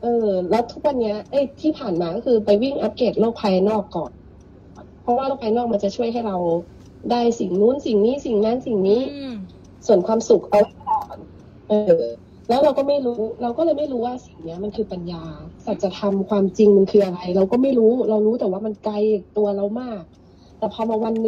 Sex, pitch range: female, 195-240 Hz